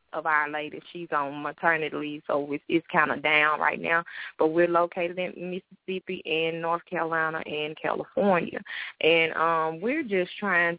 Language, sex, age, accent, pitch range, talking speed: English, female, 20-39, American, 160-180 Hz, 165 wpm